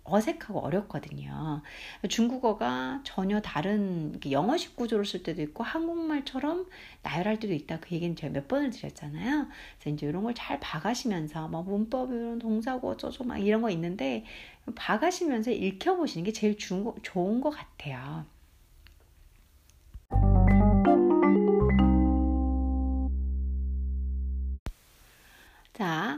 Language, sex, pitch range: Korean, female, 150-250 Hz